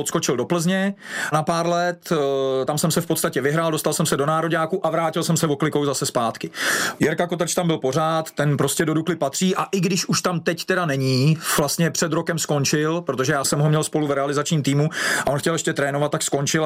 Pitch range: 140-175 Hz